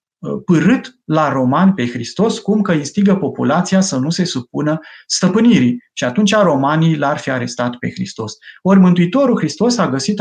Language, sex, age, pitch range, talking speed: Romanian, male, 30-49, 135-190 Hz, 160 wpm